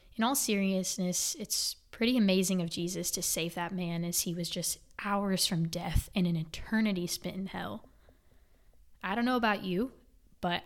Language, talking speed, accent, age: English, 175 wpm, American, 20-39